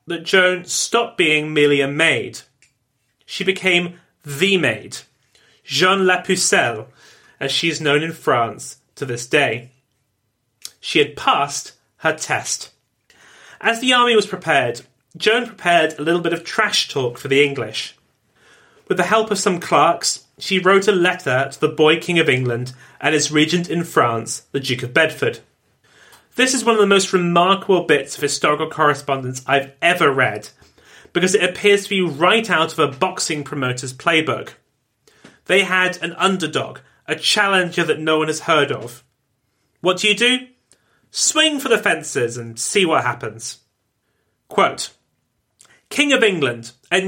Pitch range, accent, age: 140-195 Hz, British, 30-49